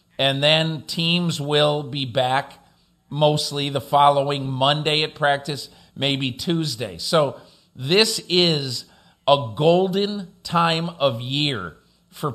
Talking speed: 110 wpm